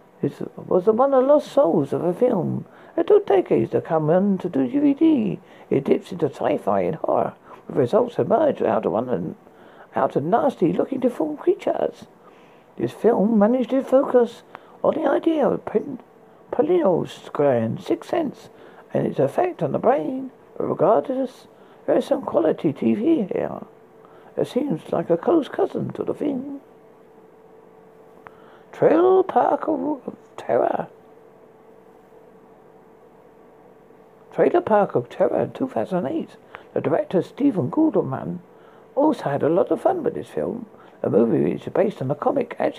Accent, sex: British, male